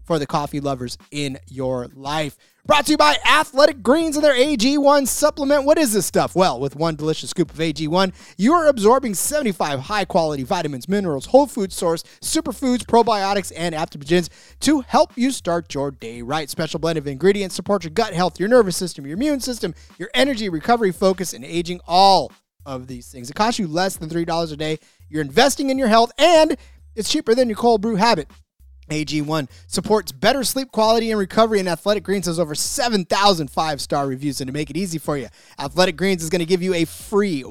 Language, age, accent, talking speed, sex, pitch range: English, 30-49, American, 200 wpm, male, 155-225 Hz